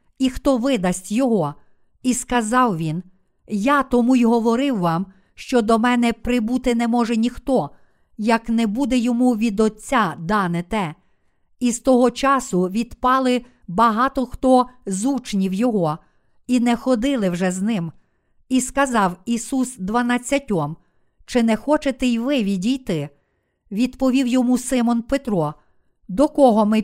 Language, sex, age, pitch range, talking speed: Ukrainian, female, 50-69, 195-255 Hz, 135 wpm